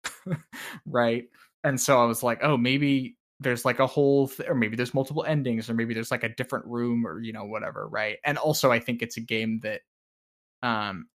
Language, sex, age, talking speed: English, male, 10-29, 210 wpm